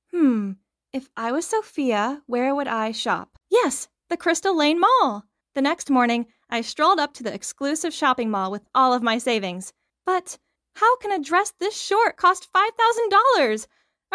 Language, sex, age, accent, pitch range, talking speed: English, female, 10-29, American, 230-340 Hz, 165 wpm